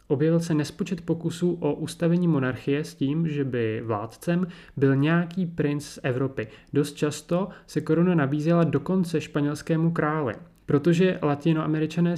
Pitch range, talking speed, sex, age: 135-165 Hz, 135 wpm, male, 30-49